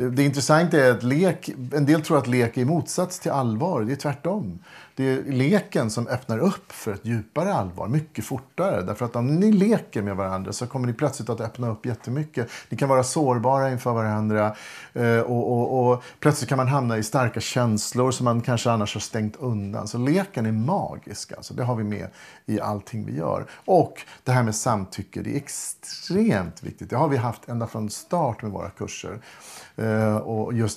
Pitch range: 110-135 Hz